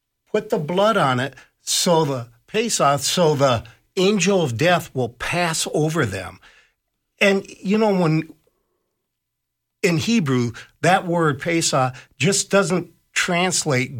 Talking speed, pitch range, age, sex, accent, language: 125 wpm, 125-175 Hz, 50-69, male, American, English